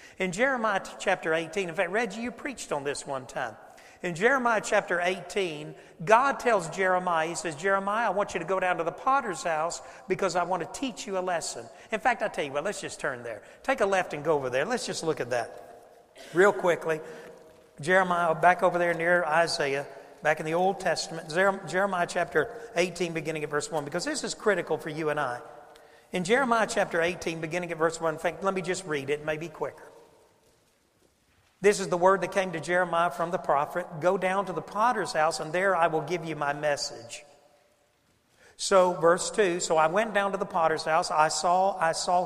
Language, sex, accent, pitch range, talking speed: English, male, American, 160-195 Hz, 205 wpm